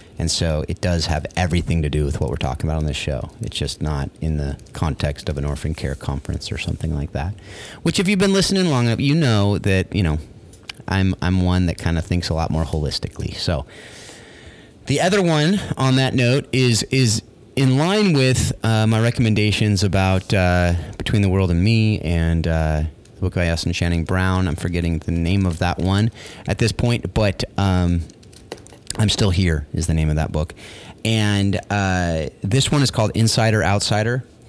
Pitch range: 85-110 Hz